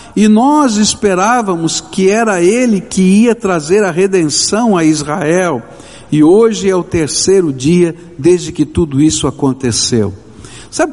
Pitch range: 150-225 Hz